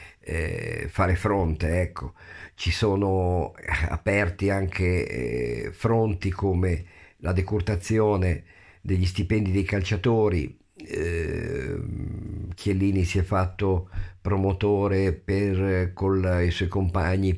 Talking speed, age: 85 wpm, 50-69